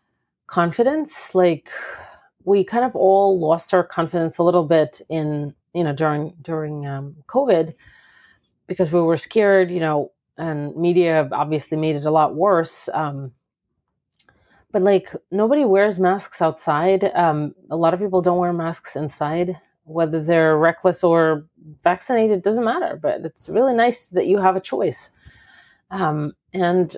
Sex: female